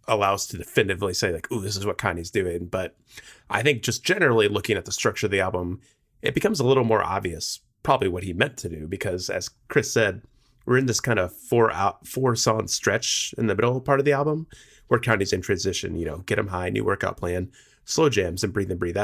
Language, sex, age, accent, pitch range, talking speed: English, male, 30-49, American, 95-120 Hz, 235 wpm